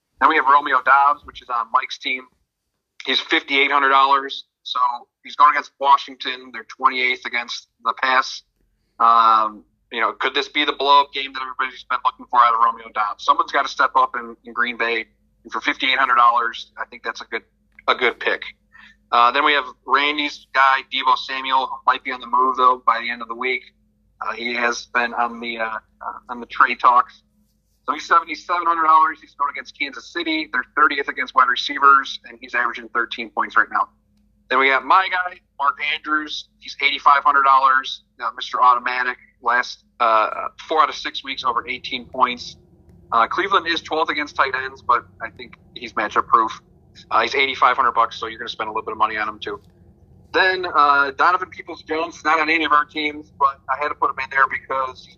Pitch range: 120-145 Hz